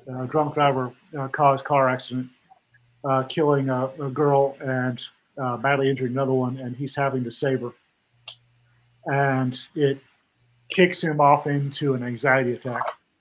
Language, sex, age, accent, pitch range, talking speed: English, male, 50-69, American, 120-145 Hz, 150 wpm